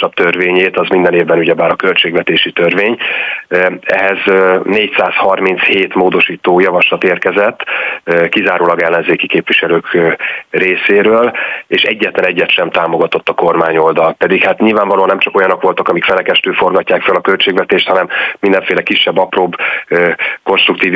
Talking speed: 125 wpm